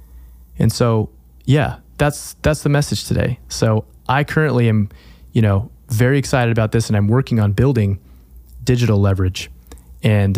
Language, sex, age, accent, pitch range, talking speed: English, male, 20-39, American, 90-115 Hz, 150 wpm